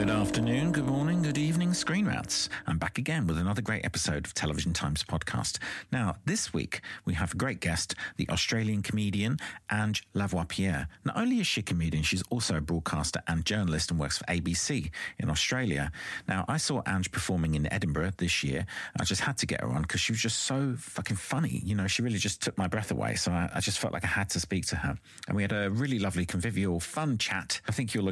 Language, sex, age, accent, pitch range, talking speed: English, male, 40-59, British, 85-115 Hz, 230 wpm